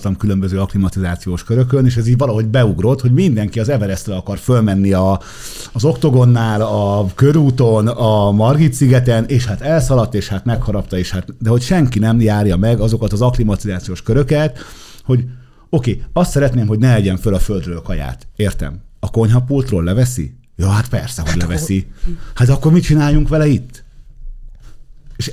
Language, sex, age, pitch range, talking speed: Hungarian, male, 50-69, 100-130 Hz, 170 wpm